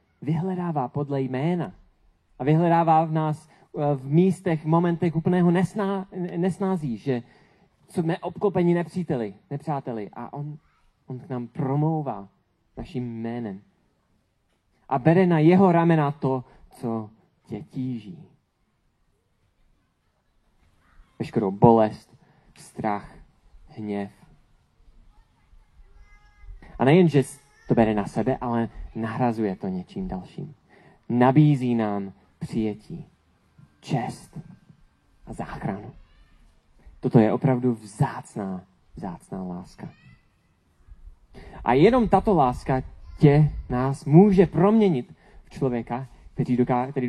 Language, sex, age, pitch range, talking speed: Czech, male, 30-49, 110-160 Hz, 95 wpm